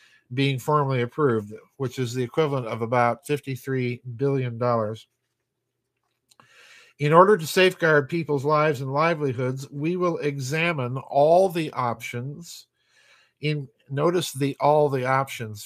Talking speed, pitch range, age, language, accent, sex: 125 wpm, 125-150 Hz, 50-69, English, American, male